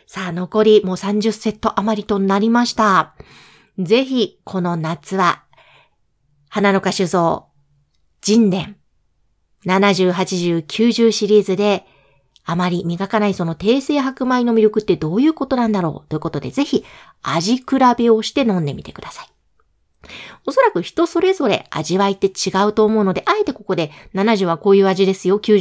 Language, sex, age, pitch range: Japanese, female, 40-59, 185-250 Hz